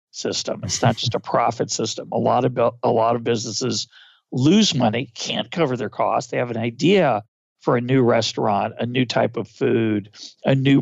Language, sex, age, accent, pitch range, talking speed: English, male, 50-69, American, 125-175 Hz, 200 wpm